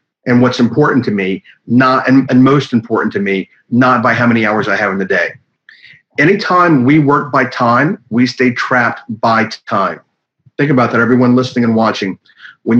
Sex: male